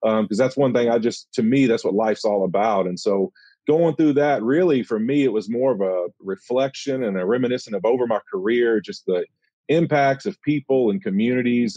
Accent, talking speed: American, 215 wpm